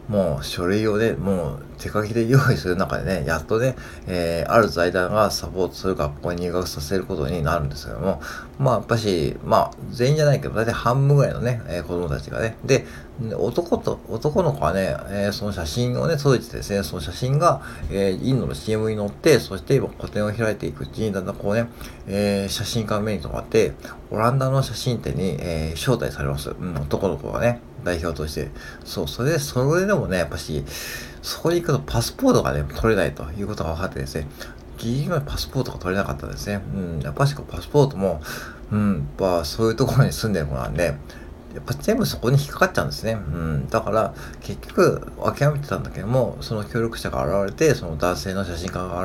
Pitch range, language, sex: 80-115 Hz, Japanese, male